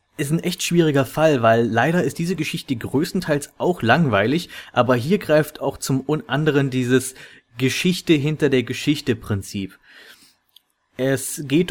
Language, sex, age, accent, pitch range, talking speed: German, male, 30-49, German, 120-150 Hz, 120 wpm